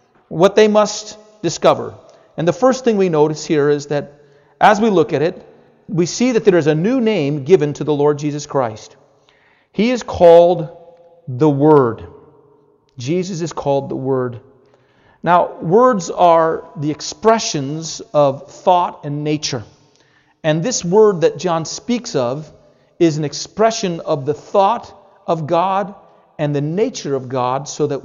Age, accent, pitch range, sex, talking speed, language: 40-59, American, 145-190 Hz, male, 155 wpm, English